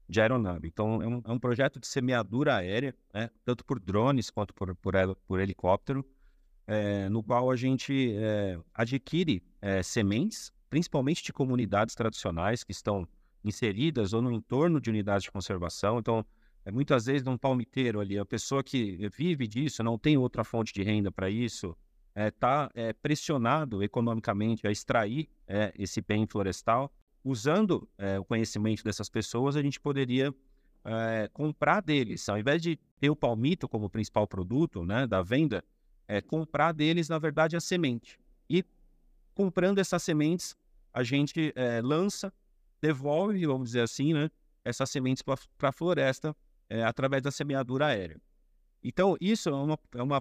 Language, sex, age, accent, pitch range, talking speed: Portuguese, male, 40-59, Brazilian, 105-150 Hz, 160 wpm